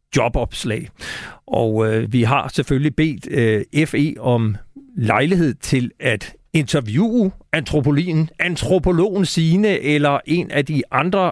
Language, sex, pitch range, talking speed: Danish, male, 120-160 Hz, 110 wpm